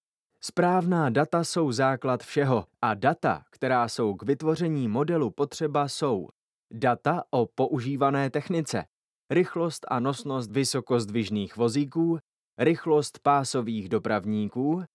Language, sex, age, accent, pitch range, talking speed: Czech, male, 20-39, native, 120-165 Hz, 105 wpm